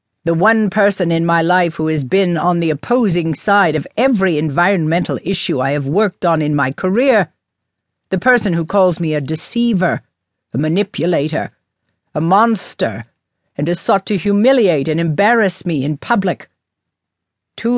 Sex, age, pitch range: female, 60-79, 145-205 Hz